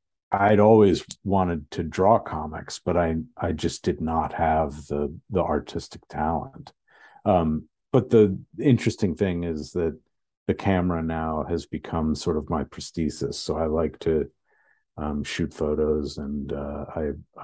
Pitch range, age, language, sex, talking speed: 80-105 Hz, 50-69, English, male, 145 wpm